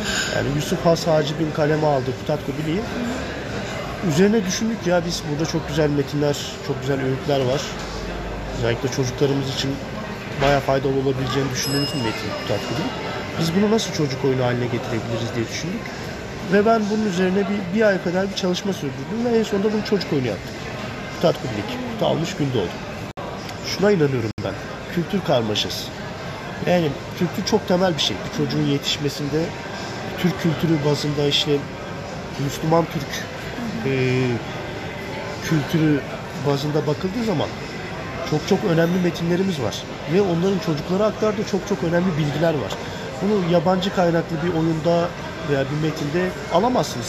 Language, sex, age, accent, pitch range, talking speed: Turkish, male, 40-59, native, 140-185 Hz, 140 wpm